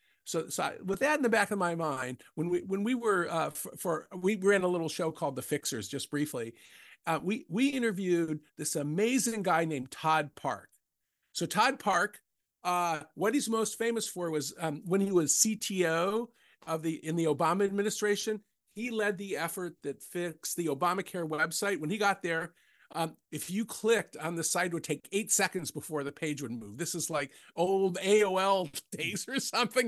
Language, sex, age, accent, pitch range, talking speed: English, male, 50-69, American, 160-200 Hz, 195 wpm